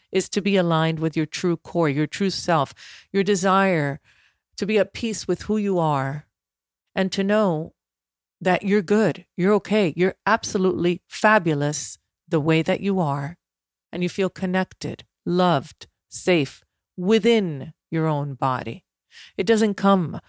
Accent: American